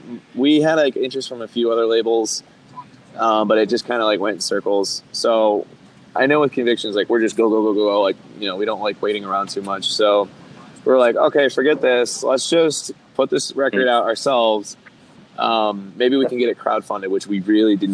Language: English